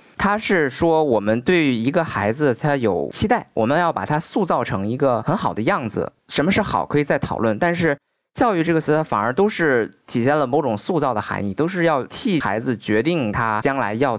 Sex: male